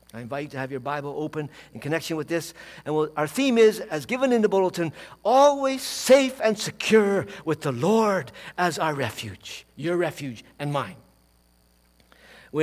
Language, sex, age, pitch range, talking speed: English, male, 60-79, 135-215 Hz, 170 wpm